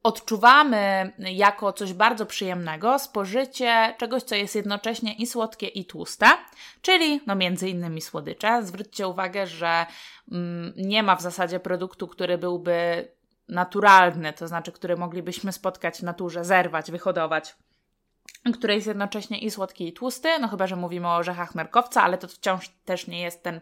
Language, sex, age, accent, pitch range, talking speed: Polish, female, 20-39, native, 185-230 Hz, 155 wpm